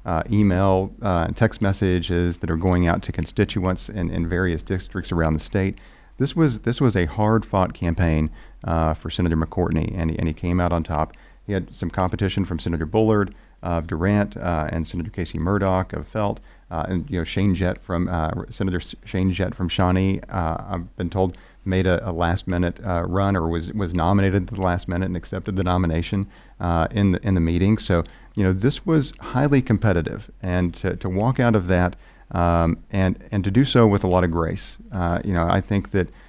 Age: 40-59